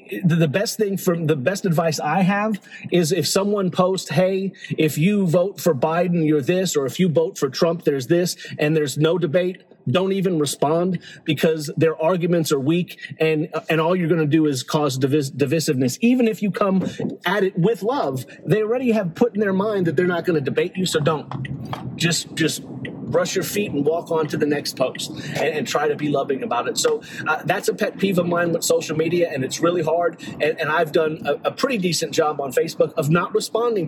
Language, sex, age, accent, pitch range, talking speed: English, male, 30-49, American, 160-205 Hz, 220 wpm